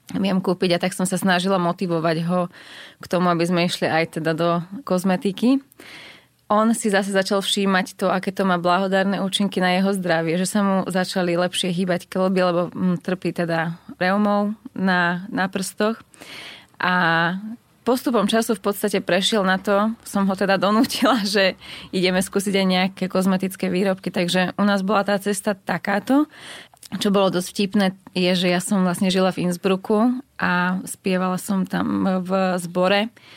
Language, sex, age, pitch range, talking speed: Slovak, female, 20-39, 175-200 Hz, 160 wpm